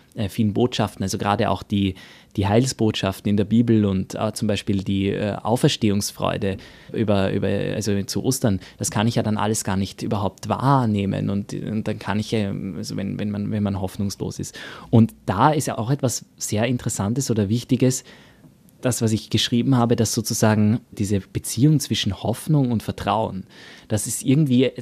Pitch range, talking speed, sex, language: 105-130 Hz, 170 wpm, male, German